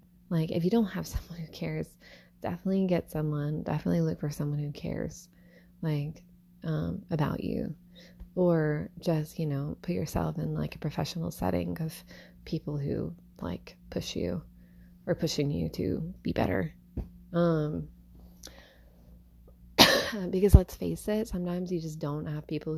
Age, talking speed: 20-39, 145 wpm